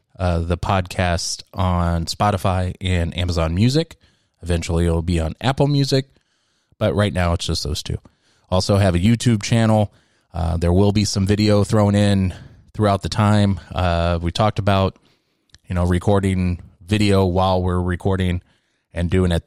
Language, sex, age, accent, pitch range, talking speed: English, male, 20-39, American, 90-105 Hz, 160 wpm